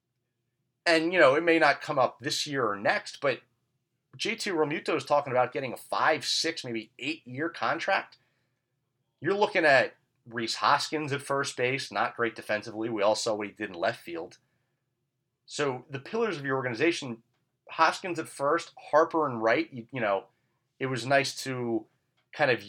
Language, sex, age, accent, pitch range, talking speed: English, male, 30-49, American, 115-140 Hz, 175 wpm